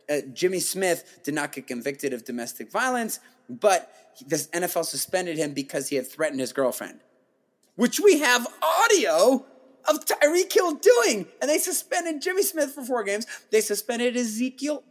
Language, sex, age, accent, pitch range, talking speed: English, male, 30-49, American, 150-245 Hz, 160 wpm